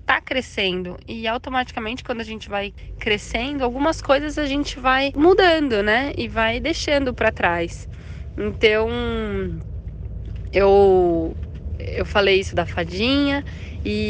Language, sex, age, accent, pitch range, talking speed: Portuguese, female, 10-29, Brazilian, 180-220 Hz, 125 wpm